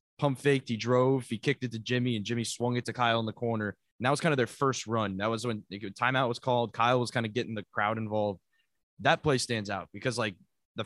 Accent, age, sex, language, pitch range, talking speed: American, 20-39, male, English, 110-130 Hz, 265 wpm